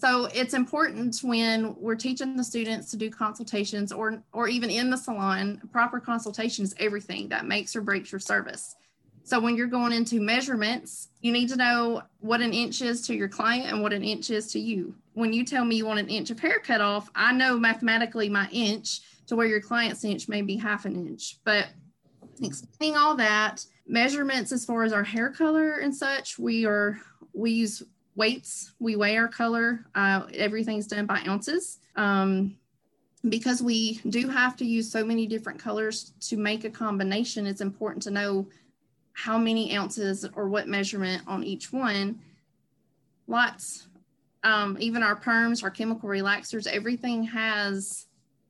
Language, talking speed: English, 175 wpm